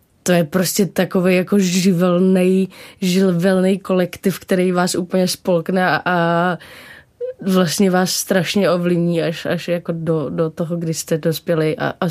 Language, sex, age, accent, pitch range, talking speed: Czech, female, 20-39, native, 165-190 Hz, 135 wpm